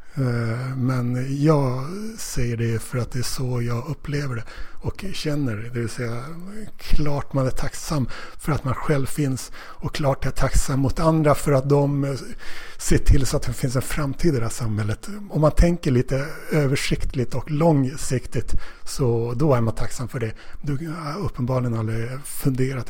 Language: Swedish